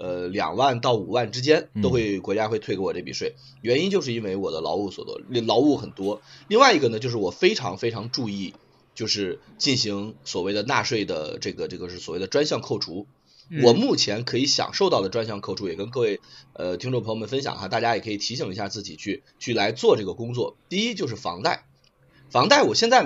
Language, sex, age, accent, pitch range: Chinese, male, 30-49, native, 110-160 Hz